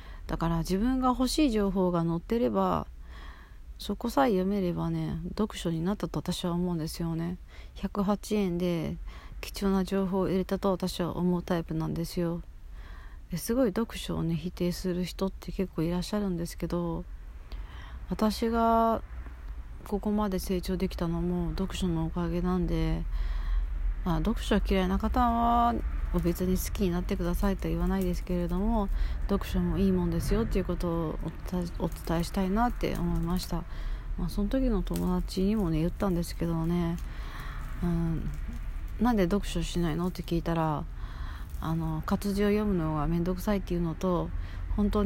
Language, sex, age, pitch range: Japanese, female, 40-59, 160-195 Hz